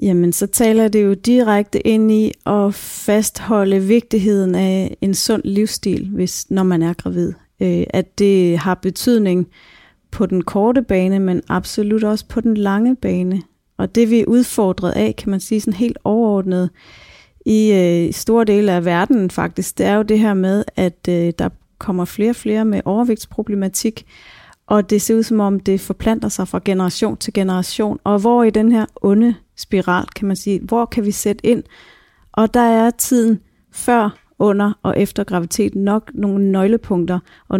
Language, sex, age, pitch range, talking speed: Danish, female, 30-49, 180-220 Hz, 175 wpm